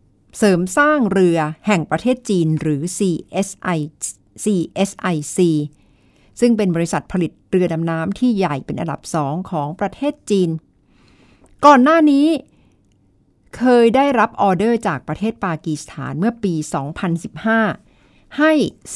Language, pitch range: Thai, 155-215 Hz